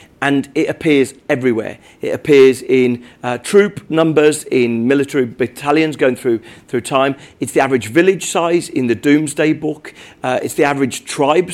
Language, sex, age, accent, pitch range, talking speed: English, male, 40-59, British, 120-155 Hz, 160 wpm